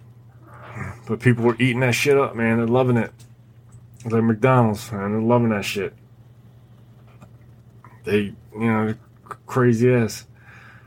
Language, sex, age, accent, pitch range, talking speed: English, male, 20-39, American, 110-120 Hz, 140 wpm